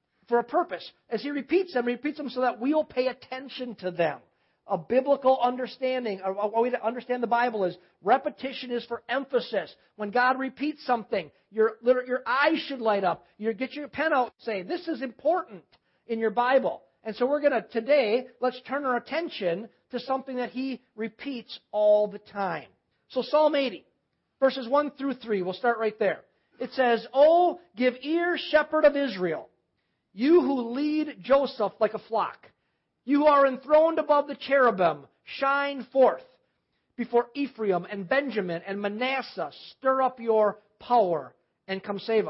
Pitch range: 215-270 Hz